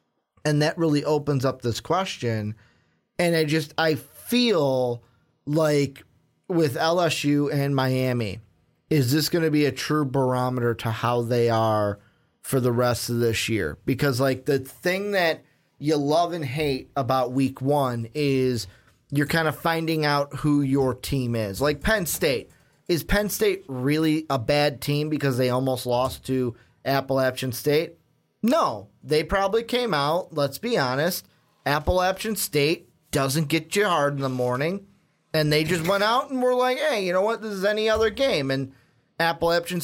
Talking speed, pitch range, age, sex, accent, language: 165 wpm, 130-170 Hz, 30-49, male, American, English